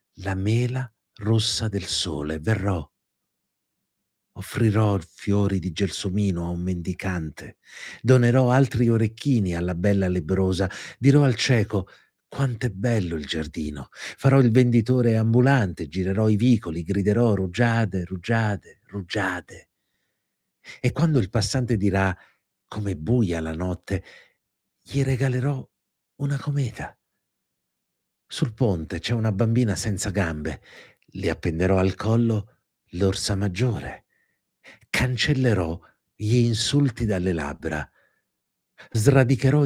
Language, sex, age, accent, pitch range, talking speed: Italian, male, 50-69, native, 95-125 Hz, 105 wpm